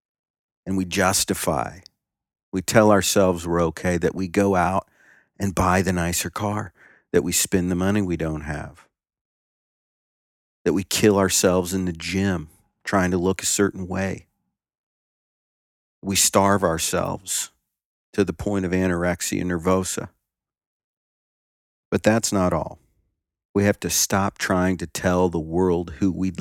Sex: male